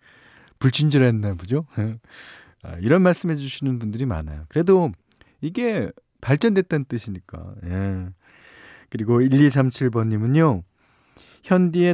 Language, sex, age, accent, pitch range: Korean, male, 40-59, native, 95-135 Hz